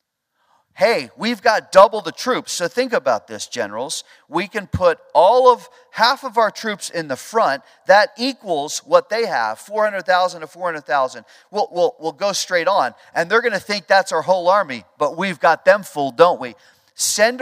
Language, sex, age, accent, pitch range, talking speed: English, male, 40-59, American, 130-205 Hz, 185 wpm